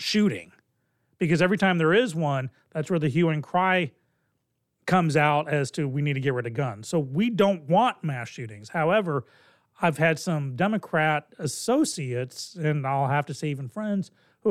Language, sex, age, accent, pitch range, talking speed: English, male, 40-59, American, 140-185 Hz, 180 wpm